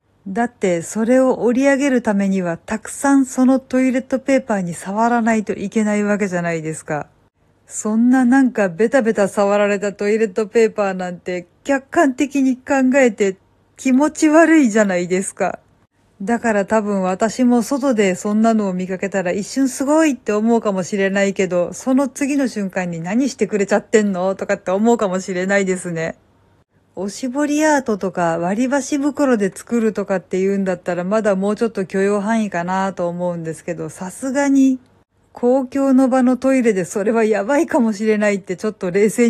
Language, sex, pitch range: Japanese, female, 195-255 Hz